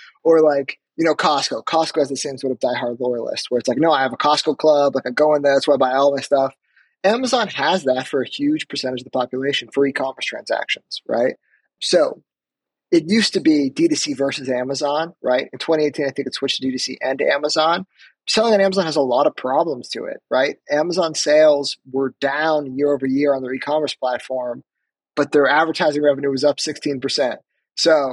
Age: 30-49